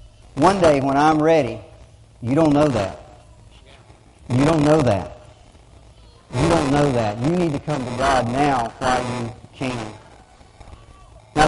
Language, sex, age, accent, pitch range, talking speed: English, male, 40-59, American, 115-155 Hz, 145 wpm